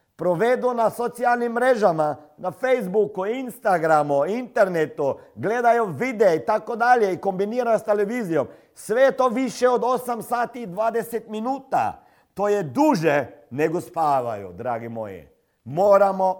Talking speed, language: 125 wpm, Croatian